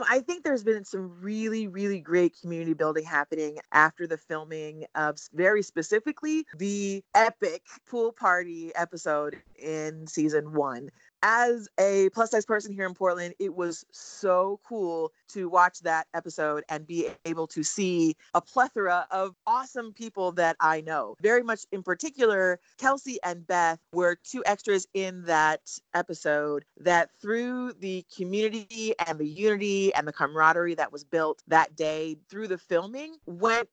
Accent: American